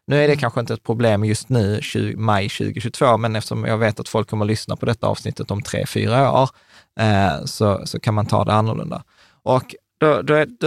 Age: 20-39